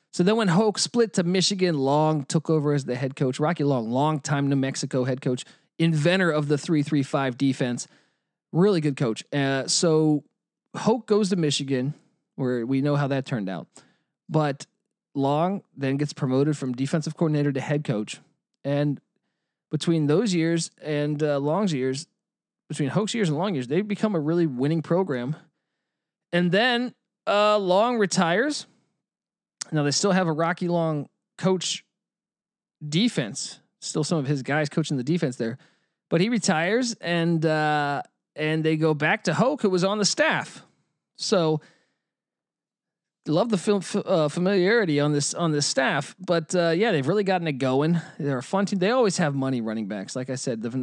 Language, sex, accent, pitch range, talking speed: English, male, American, 140-185 Hz, 170 wpm